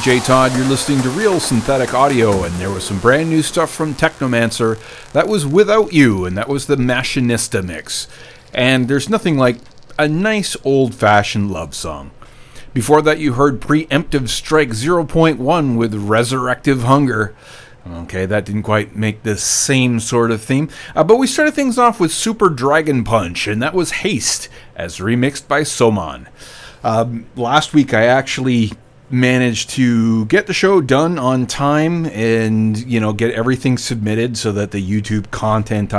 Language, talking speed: English, 165 wpm